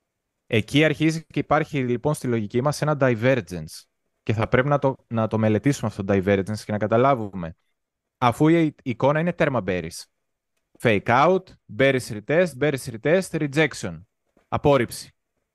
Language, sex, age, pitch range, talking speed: Greek, male, 20-39, 110-150 Hz, 155 wpm